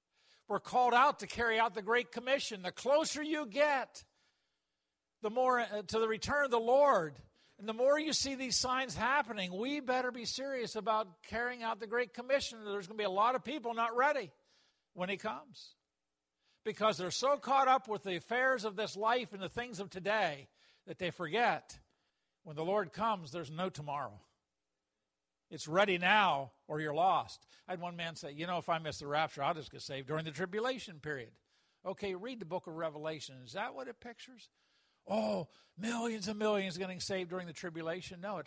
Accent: American